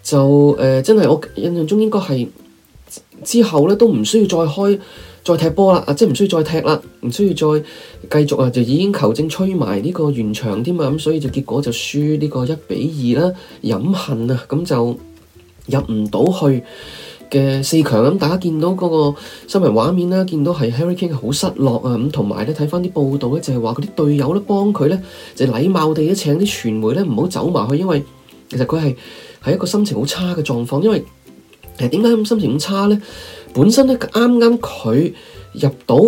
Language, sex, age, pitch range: Chinese, male, 20-39, 135-190 Hz